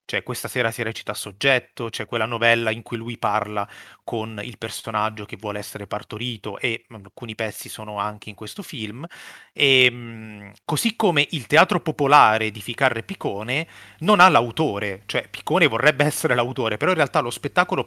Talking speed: 175 wpm